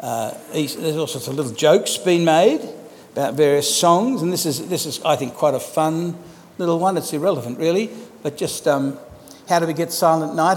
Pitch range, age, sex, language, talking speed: 150-195 Hz, 60-79, male, English, 205 wpm